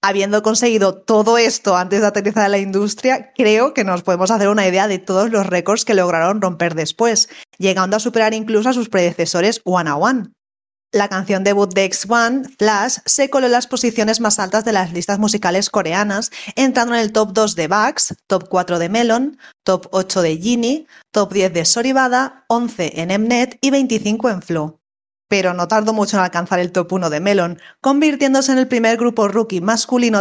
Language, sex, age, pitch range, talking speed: Spanish, female, 20-39, 185-235 Hz, 195 wpm